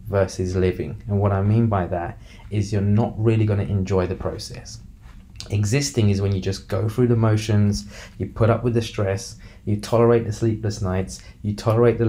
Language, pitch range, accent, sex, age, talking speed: English, 100-115 Hz, British, male, 20-39, 200 wpm